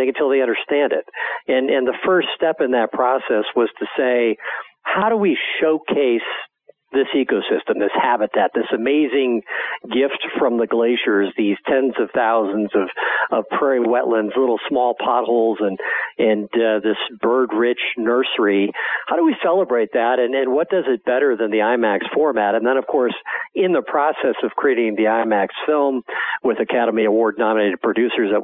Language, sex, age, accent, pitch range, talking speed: English, male, 50-69, American, 110-150 Hz, 160 wpm